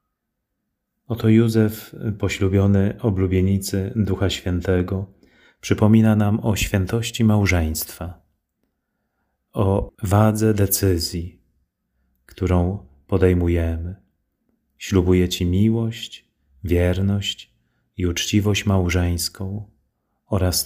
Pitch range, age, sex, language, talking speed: 85-110 Hz, 30-49, male, Polish, 70 wpm